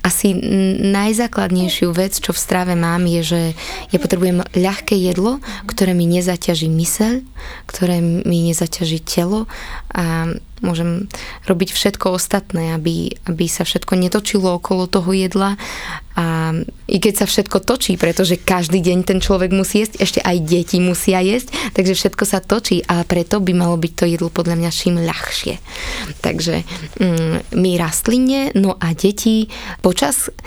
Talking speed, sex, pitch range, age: 145 wpm, female, 170-195 Hz, 20-39